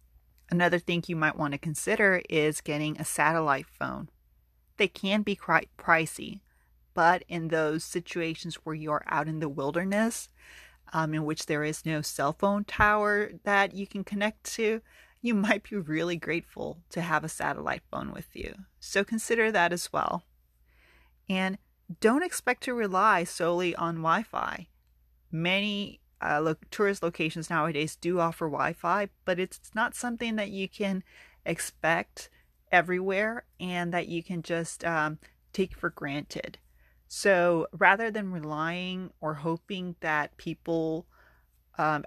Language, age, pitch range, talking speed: English, 30-49, 150-190 Hz, 145 wpm